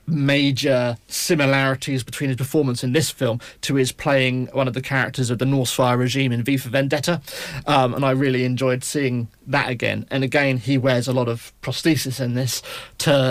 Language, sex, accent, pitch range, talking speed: English, male, British, 125-145 Hz, 190 wpm